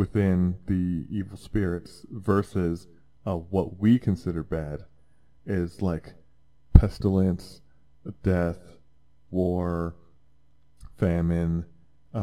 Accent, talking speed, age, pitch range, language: American, 80 wpm, 20-39, 85-110 Hz, English